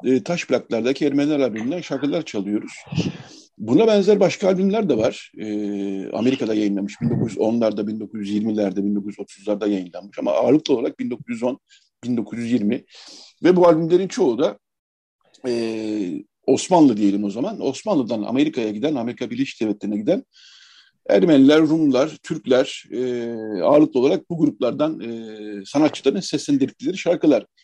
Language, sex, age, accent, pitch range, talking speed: Turkish, male, 50-69, native, 115-180 Hz, 115 wpm